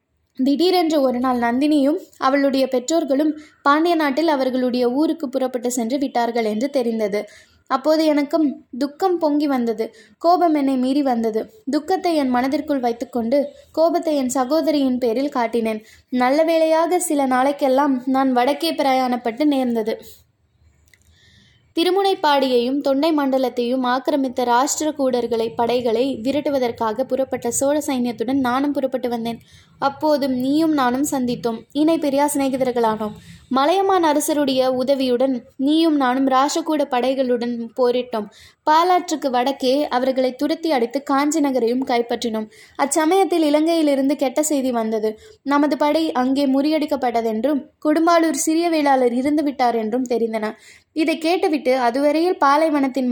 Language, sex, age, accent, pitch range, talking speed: Tamil, female, 20-39, native, 245-300 Hz, 105 wpm